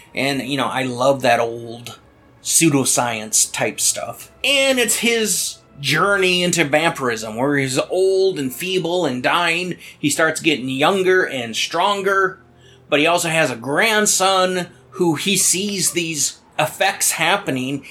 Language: English